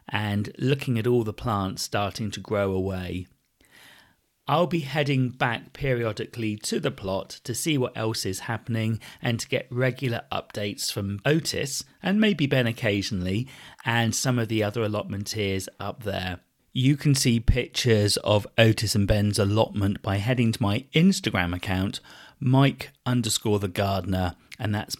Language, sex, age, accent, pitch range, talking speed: English, male, 40-59, British, 100-130 Hz, 155 wpm